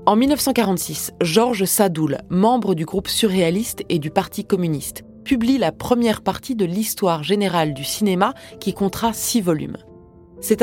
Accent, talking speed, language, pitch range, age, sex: French, 145 wpm, French, 165-220 Hz, 20-39, female